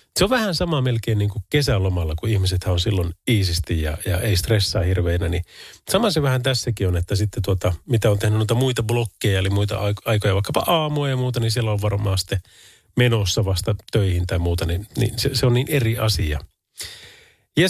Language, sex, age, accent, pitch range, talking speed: Finnish, male, 30-49, native, 105-140 Hz, 200 wpm